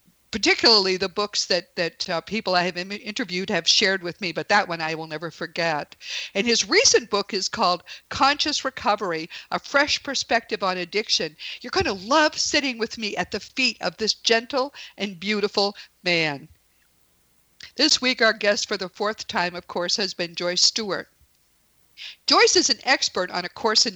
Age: 50-69